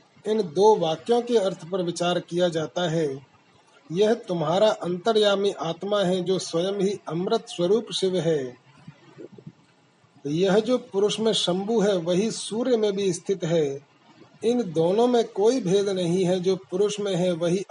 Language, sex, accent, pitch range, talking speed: Hindi, male, native, 165-205 Hz, 155 wpm